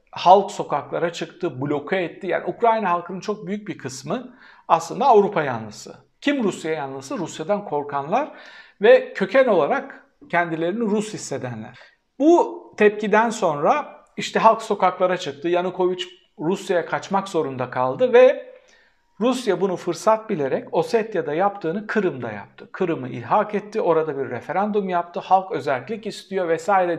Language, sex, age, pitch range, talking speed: Turkish, male, 60-79, 140-220 Hz, 130 wpm